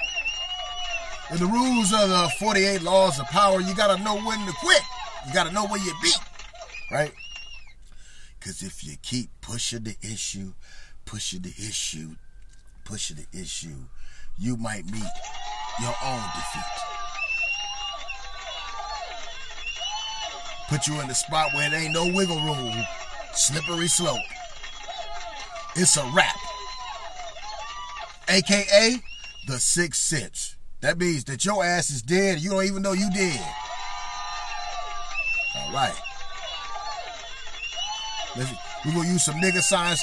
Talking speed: 125 wpm